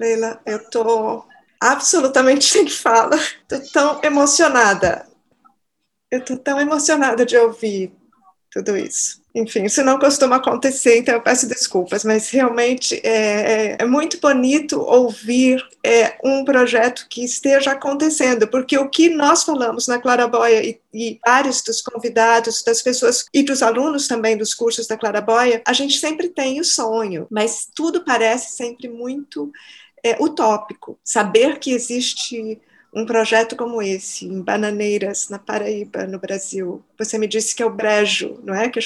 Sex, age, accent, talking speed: female, 20-39, Brazilian, 150 wpm